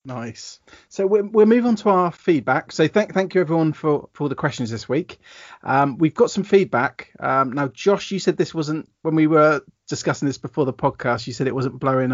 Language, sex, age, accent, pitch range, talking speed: English, male, 30-49, British, 125-155 Hz, 215 wpm